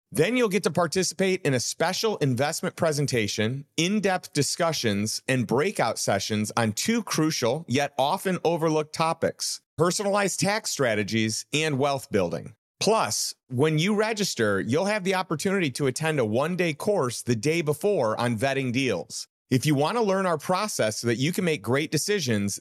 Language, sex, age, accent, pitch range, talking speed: English, male, 40-59, American, 125-185 Hz, 160 wpm